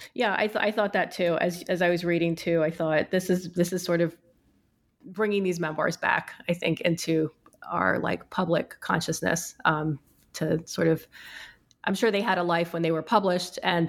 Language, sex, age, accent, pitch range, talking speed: English, female, 30-49, American, 165-185 Hz, 205 wpm